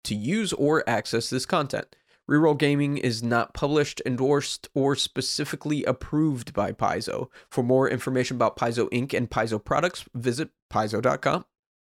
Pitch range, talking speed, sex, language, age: 120-155 Hz, 140 wpm, male, English, 20-39